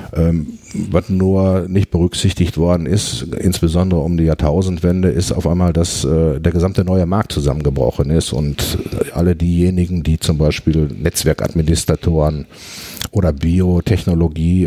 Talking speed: 125 wpm